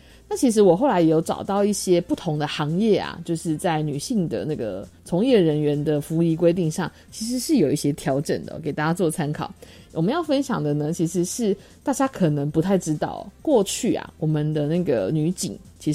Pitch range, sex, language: 150-190 Hz, female, Chinese